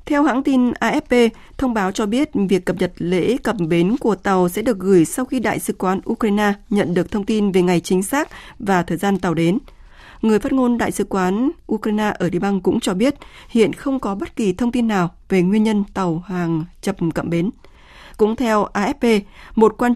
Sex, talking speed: female, 215 wpm